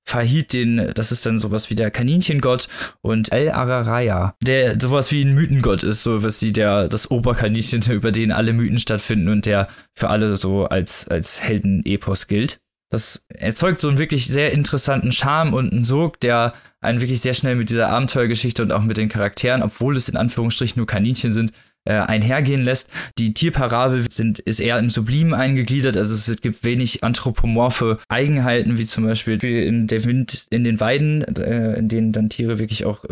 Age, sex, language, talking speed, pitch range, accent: 20-39, male, German, 180 wpm, 110-125 Hz, German